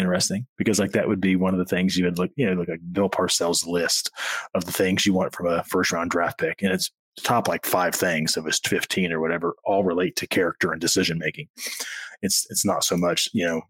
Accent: American